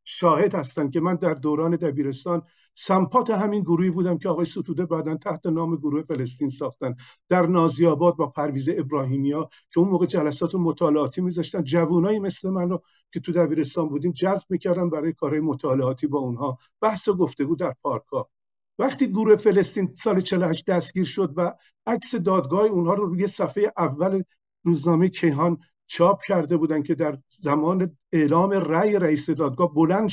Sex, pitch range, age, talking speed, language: male, 160-195 Hz, 50-69, 160 wpm, Persian